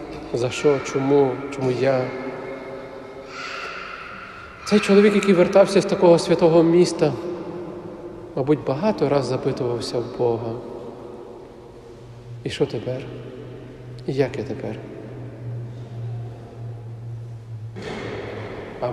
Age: 50-69